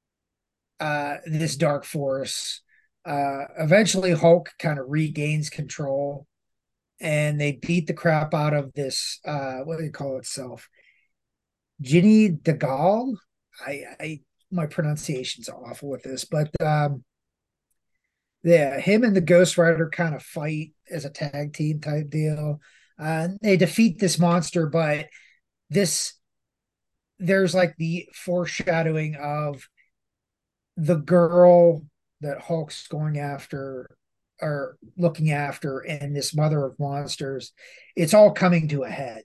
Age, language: 30-49, English